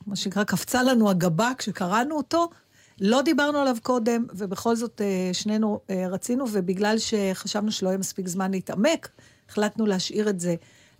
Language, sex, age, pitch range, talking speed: Hebrew, female, 50-69, 190-240 Hz, 155 wpm